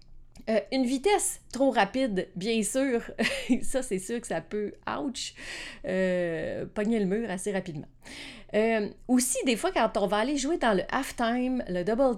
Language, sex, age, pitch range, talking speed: French, female, 40-59, 180-240 Hz, 175 wpm